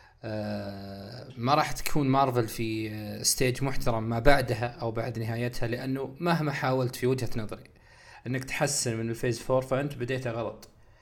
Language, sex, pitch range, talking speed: Arabic, male, 115-130 Hz, 150 wpm